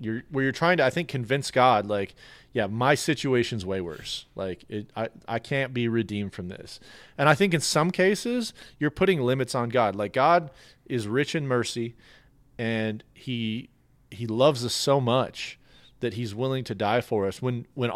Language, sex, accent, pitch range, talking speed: English, male, American, 105-130 Hz, 190 wpm